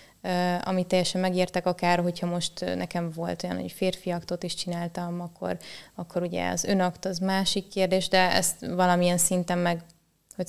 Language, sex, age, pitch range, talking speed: Hungarian, female, 20-39, 175-190 Hz, 160 wpm